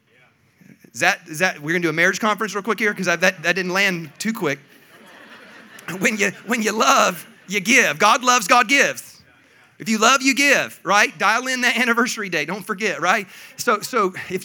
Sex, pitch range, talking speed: male, 190-255 Hz, 190 wpm